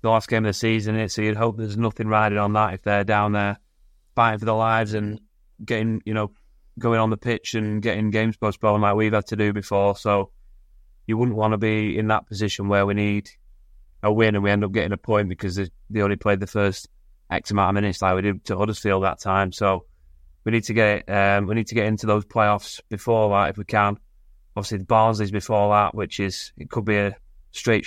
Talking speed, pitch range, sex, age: 235 wpm, 100-110 Hz, male, 20-39